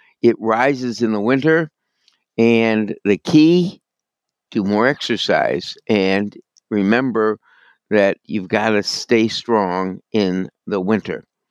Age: 60-79